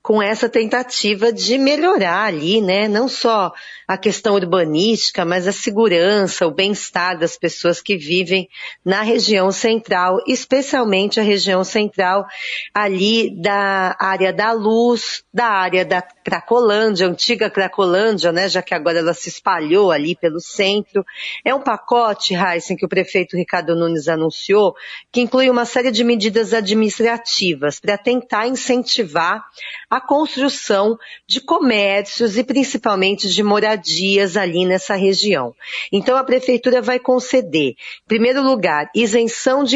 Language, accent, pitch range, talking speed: Portuguese, Brazilian, 185-230 Hz, 135 wpm